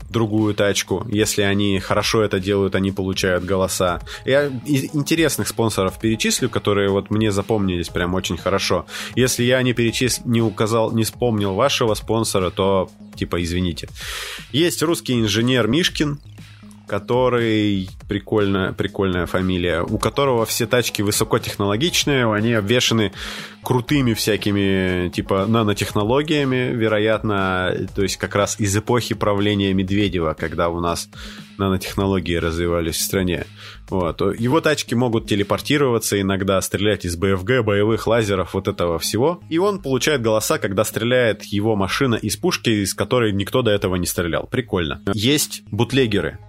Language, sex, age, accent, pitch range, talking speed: Russian, male, 20-39, native, 95-115 Hz, 130 wpm